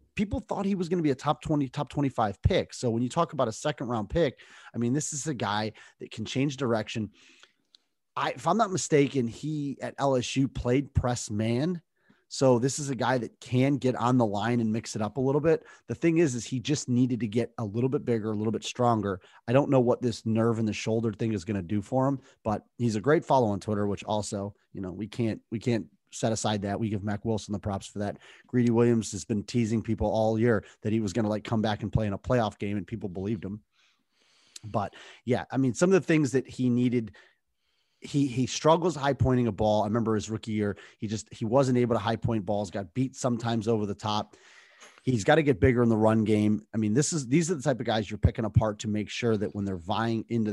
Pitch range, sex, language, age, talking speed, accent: 105-130 Hz, male, English, 30-49, 255 wpm, American